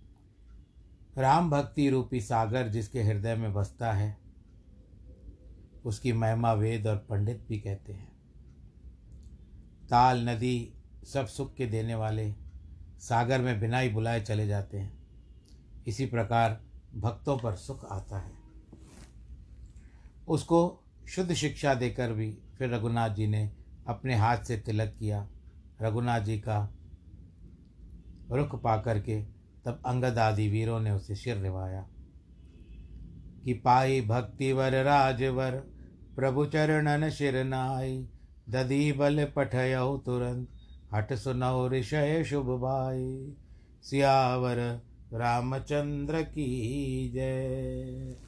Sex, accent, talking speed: male, native, 105 wpm